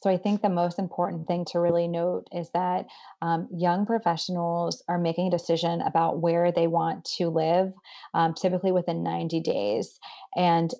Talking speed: 170 wpm